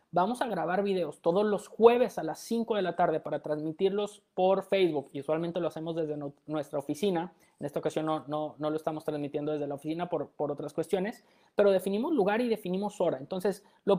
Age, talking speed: 30-49, 210 wpm